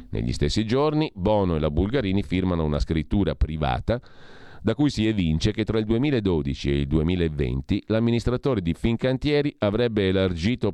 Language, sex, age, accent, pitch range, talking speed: Italian, male, 40-59, native, 80-115 Hz, 150 wpm